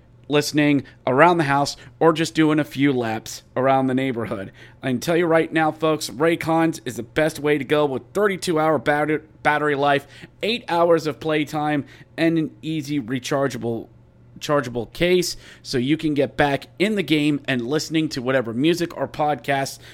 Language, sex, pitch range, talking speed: English, male, 130-160 Hz, 170 wpm